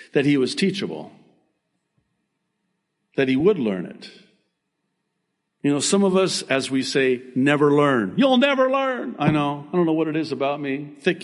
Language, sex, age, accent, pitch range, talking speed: English, male, 50-69, American, 110-165 Hz, 175 wpm